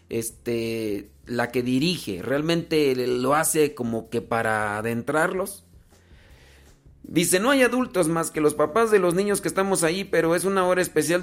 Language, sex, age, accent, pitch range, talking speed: Spanish, male, 40-59, Mexican, 135-175 Hz, 160 wpm